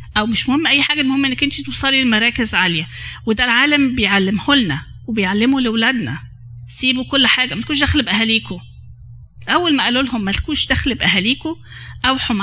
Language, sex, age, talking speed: Arabic, female, 20-39, 150 wpm